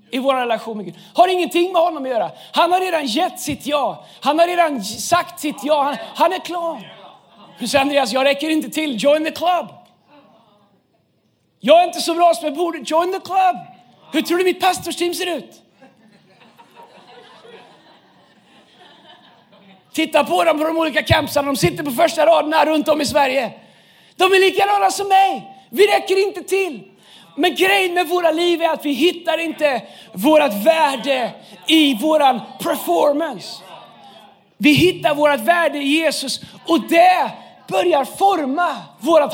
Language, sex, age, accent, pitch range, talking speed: Swedish, male, 40-59, native, 250-335 Hz, 165 wpm